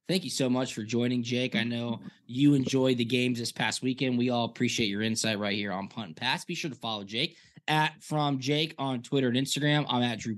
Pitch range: 120-150 Hz